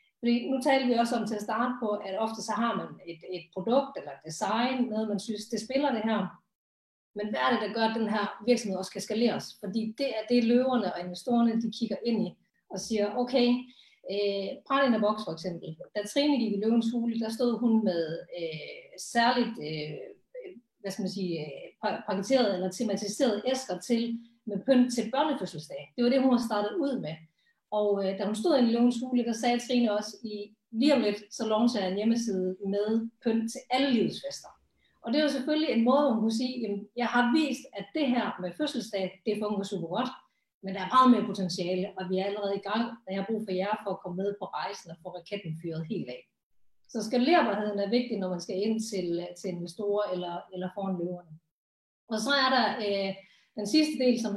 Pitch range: 195-245 Hz